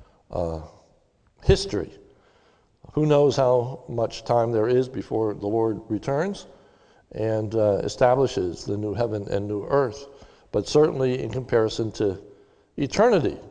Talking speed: 125 wpm